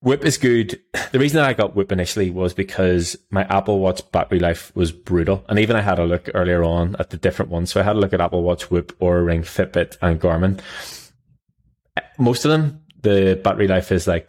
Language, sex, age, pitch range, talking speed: English, male, 20-39, 90-100 Hz, 225 wpm